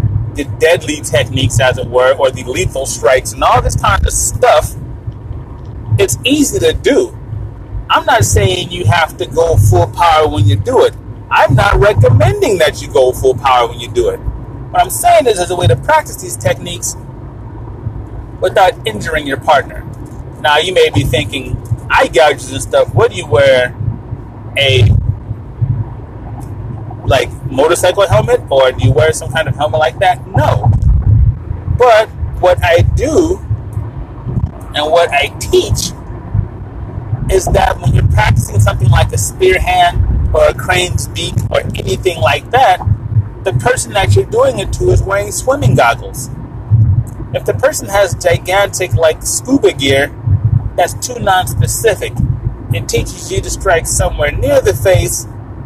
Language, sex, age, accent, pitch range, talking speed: English, male, 30-49, American, 110-130 Hz, 155 wpm